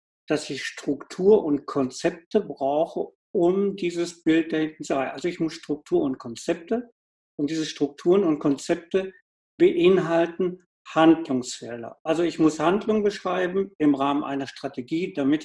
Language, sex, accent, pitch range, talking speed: German, male, German, 150-195 Hz, 145 wpm